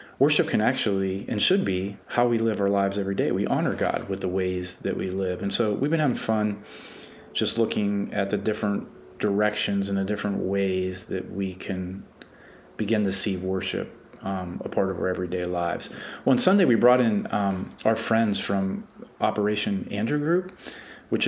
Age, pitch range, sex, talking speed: 30-49, 95-110 Hz, male, 185 wpm